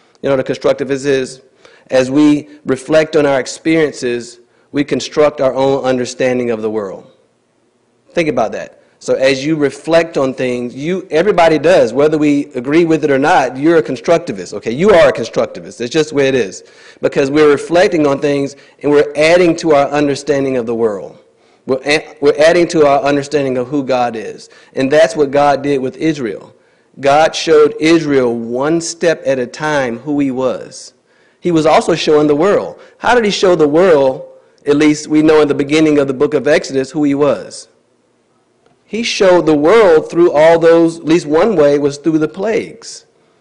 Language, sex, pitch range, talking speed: English, male, 135-160 Hz, 190 wpm